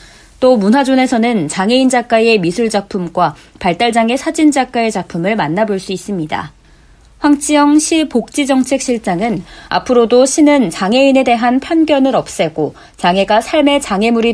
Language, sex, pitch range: Korean, female, 195-270 Hz